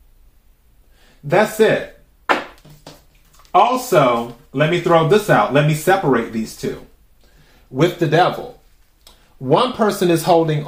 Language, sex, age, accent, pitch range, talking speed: English, male, 30-49, American, 115-170 Hz, 110 wpm